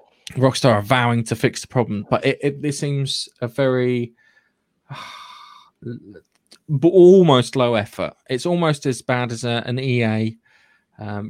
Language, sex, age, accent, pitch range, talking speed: English, male, 20-39, British, 115-155 Hz, 145 wpm